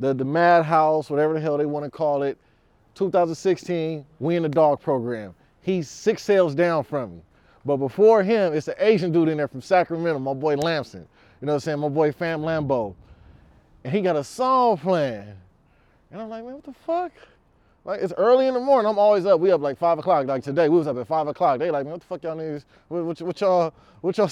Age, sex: 20-39, male